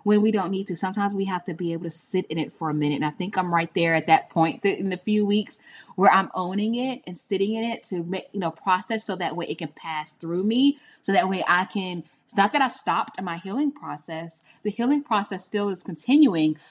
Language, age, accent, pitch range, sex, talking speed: English, 10-29, American, 165-200 Hz, female, 250 wpm